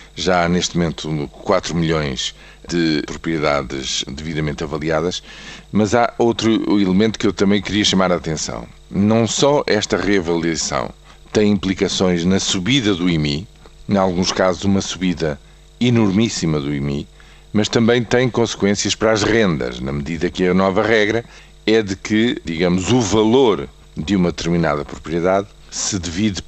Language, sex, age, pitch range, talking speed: Portuguese, male, 50-69, 80-105 Hz, 145 wpm